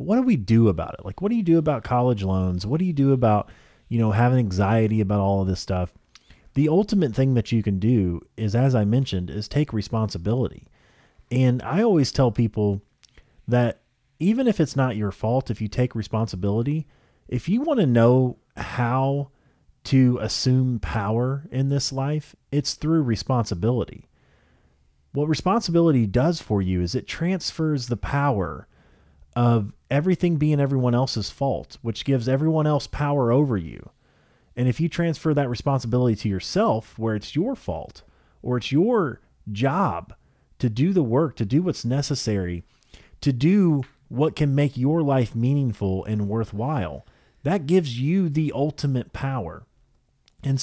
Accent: American